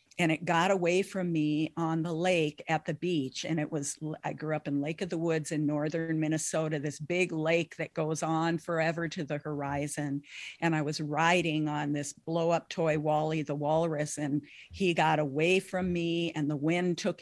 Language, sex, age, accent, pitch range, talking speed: English, female, 50-69, American, 155-175 Hz, 200 wpm